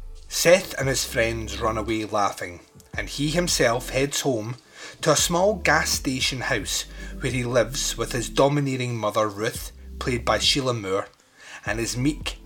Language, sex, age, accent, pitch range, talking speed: English, male, 30-49, British, 110-145 Hz, 160 wpm